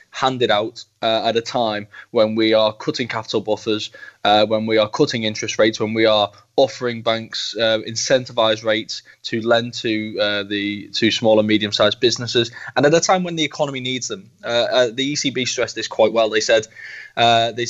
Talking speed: 195 wpm